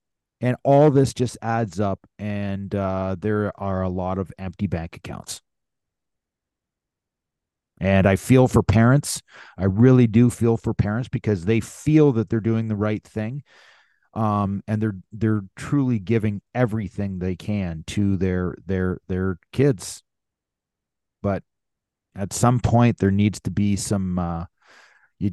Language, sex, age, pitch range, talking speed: English, male, 30-49, 95-115 Hz, 145 wpm